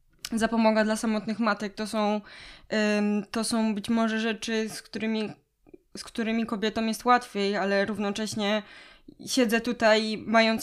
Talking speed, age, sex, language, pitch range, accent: 135 wpm, 20-39, female, Polish, 205-245 Hz, native